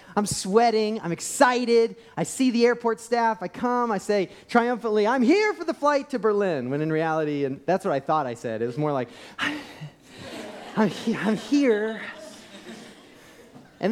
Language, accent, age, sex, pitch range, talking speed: English, American, 30-49, male, 155-235 Hz, 170 wpm